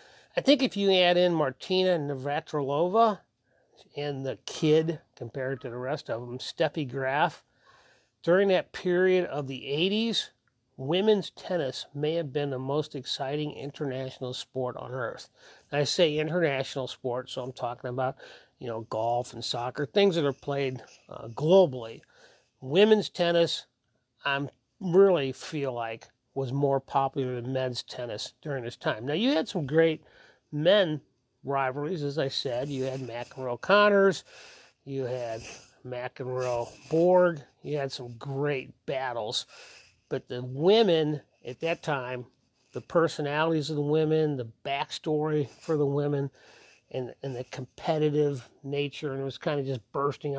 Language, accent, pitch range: English, American, 130-160 Hz